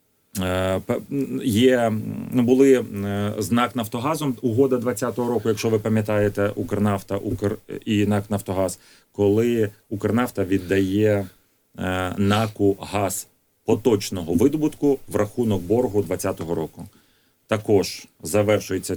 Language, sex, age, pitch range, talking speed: Ukrainian, male, 30-49, 95-115 Hz, 95 wpm